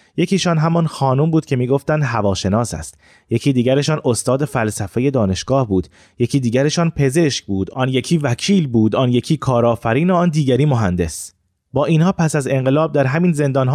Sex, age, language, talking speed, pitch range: male, 30-49, Persian, 160 wpm, 105-140 Hz